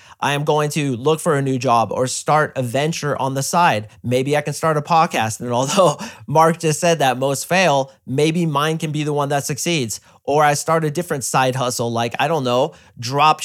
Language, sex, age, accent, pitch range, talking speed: English, male, 30-49, American, 130-160 Hz, 225 wpm